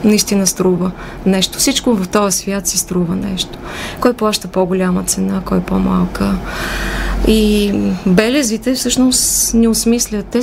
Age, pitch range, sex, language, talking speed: 20-39, 185-225 Hz, female, Bulgarian, 125 wpm